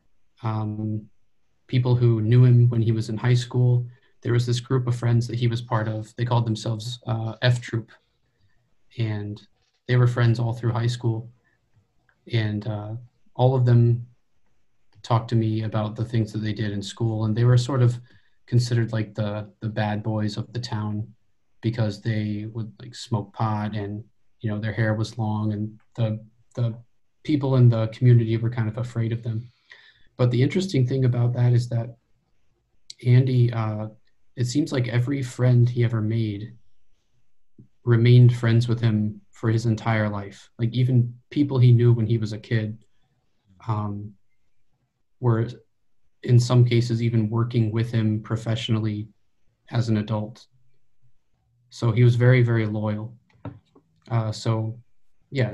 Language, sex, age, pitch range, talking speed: English, male, 30-49, 110-120 Hz, 160 wpm